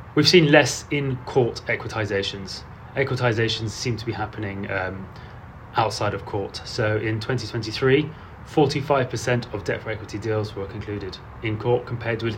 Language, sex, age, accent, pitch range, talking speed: English, male, 30-49, British, 105-130 Hz, 140 wpm